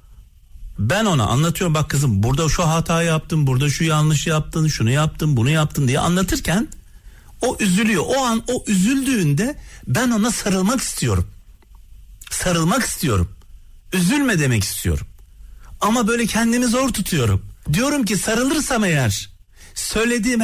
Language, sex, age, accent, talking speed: Turkish, male, 60-79, native, 130 wpm